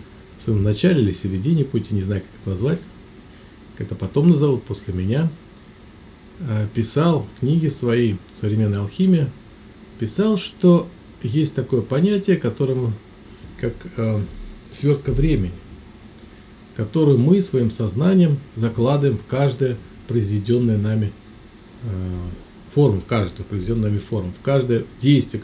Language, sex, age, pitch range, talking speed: Russian, male, 40-59, 105-140 Hz, 110 wpm